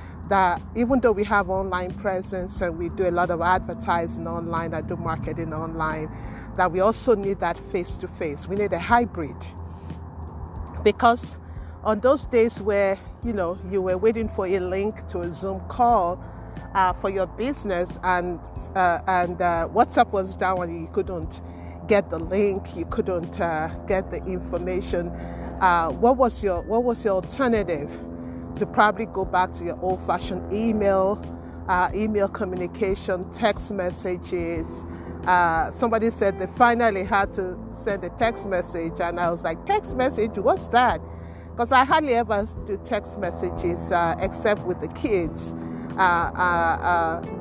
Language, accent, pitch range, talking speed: English, Nigerian, 160-205 Hz, 160 wpm